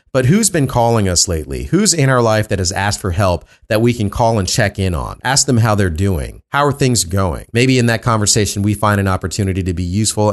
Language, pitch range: English, 90-110 Hz